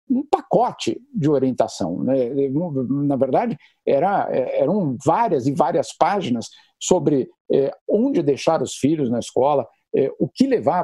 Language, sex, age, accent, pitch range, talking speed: Portuguese, male, 50-69, Brazilian, 150-235 Hz, 120 wpm